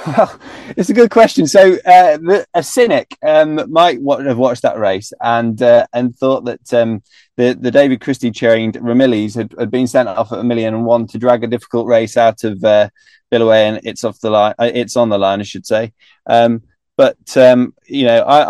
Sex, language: male, English